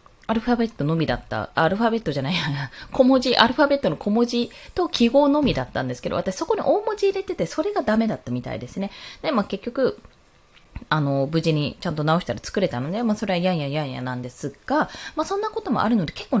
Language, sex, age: Japanese, female, 20-39